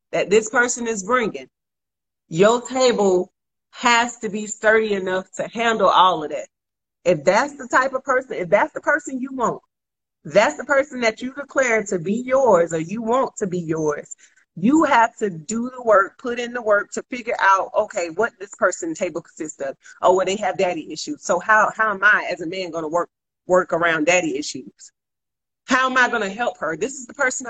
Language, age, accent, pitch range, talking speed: English, 30-49, American, 175-250 Hz, 215 wpm